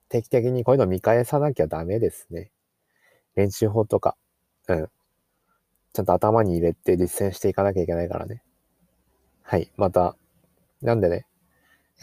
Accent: native